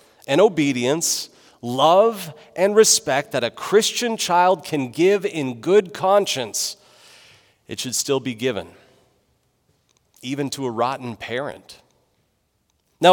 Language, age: English, 40-59